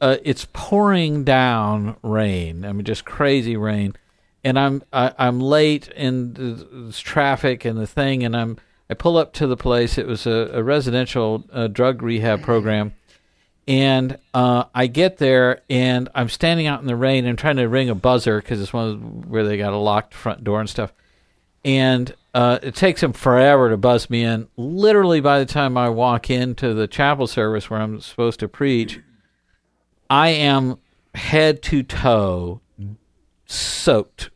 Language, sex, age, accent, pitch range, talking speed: English, male, 50-69, American, 110-140 Hz, 175 wpm